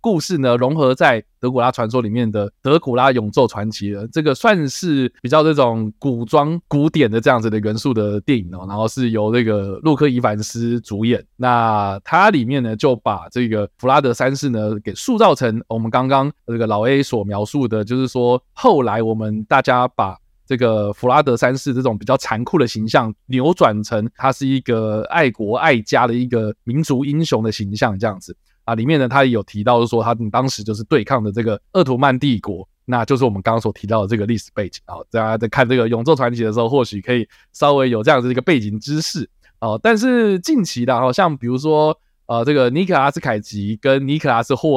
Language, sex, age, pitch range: Chinese, male, 20-39, 110-140 Hz